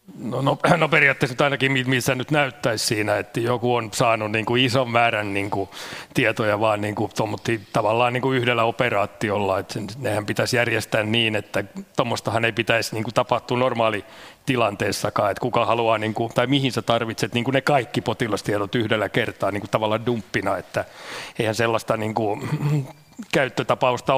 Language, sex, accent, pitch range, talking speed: Finnish, male, native, 105-125 Hz, 145 wpm